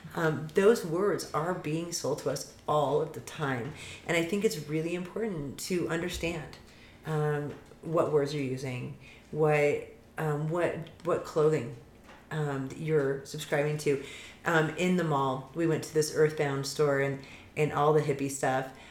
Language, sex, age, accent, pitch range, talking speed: English, female, 30-49, American, 145-170 Hz, 160 wpm